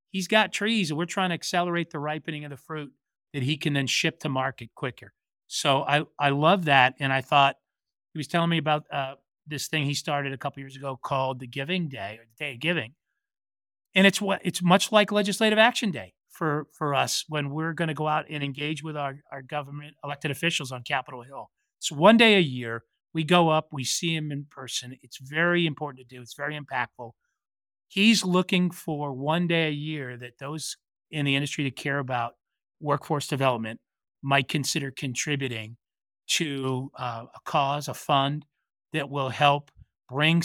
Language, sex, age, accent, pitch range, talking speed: English, male, 40-59, American, 135-170 Hz, 200 wpm